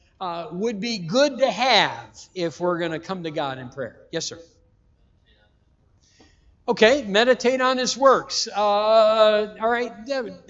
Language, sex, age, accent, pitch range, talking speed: English, male, 60-79, American, 130-215 Hz, 150 wpm